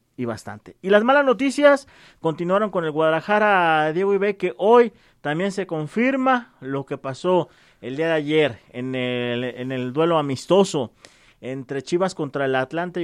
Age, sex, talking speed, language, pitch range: 40-59, male, 165 wpm, Spanish, 140-210 Hz